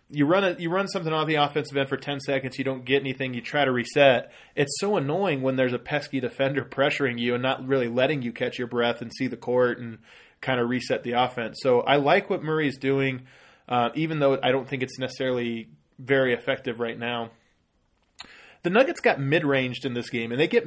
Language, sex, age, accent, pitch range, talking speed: English, male, 20-39, American, 125-155 Hz, 225 wpm